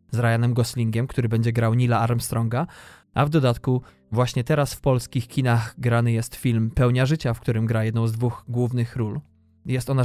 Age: 20-39